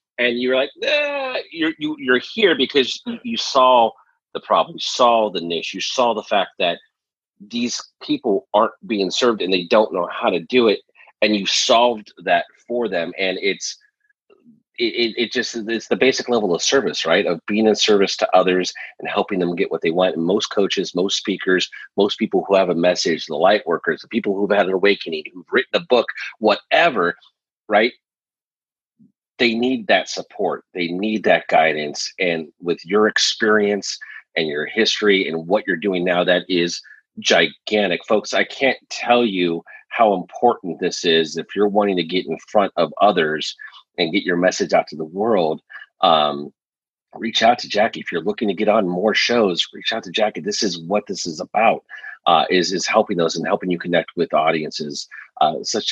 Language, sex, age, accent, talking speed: English, male, 30-49, American, 190 wpm